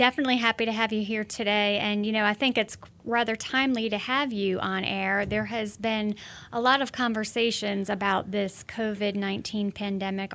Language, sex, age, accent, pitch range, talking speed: English, female, 30-49, American, 195-225 Hz, 180 wpm